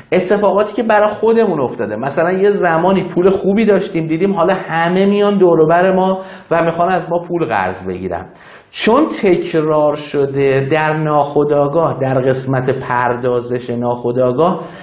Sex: male